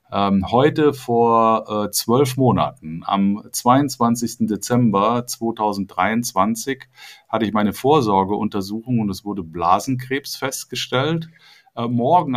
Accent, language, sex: German, German, male